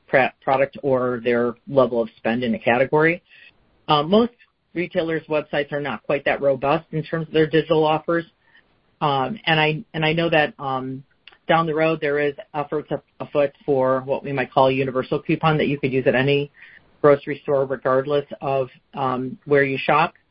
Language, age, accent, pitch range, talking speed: English, 40-59, American, 130-160 Hz, 185 wpm